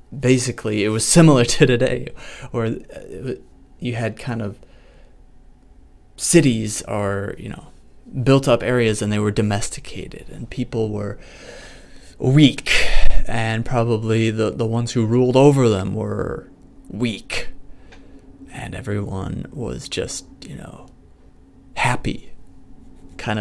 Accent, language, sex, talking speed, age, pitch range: American, English, male, 115 wpm, 20-39, 95-125 Hz